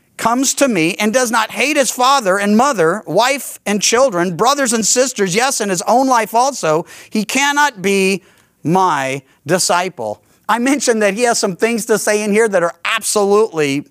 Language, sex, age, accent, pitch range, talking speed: English, male, 50-69, American, 185-245 Hz, 180 wpm